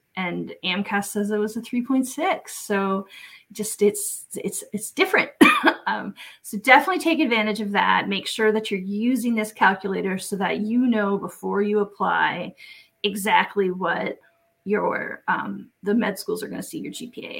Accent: American